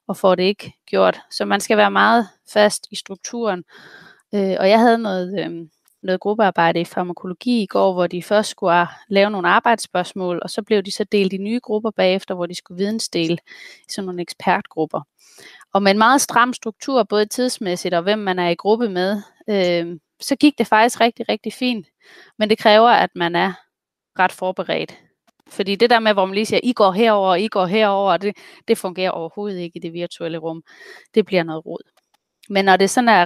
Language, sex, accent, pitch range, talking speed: Danish, female, native, 185-225 Hz, 200 wpm